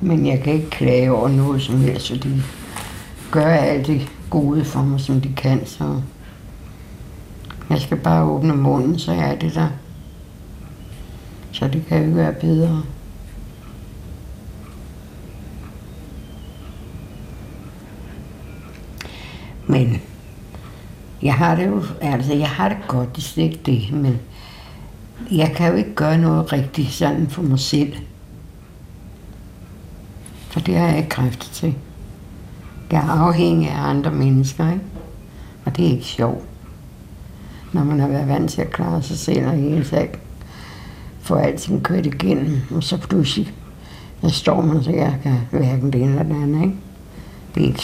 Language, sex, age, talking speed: Danish, female, 60-79, 145 wpm